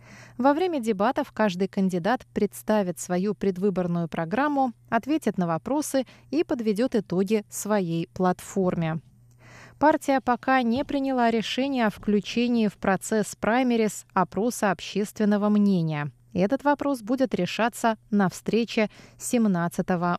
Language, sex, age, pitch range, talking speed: Russian, female, 20-39, 180-245 Hz, 110 wpm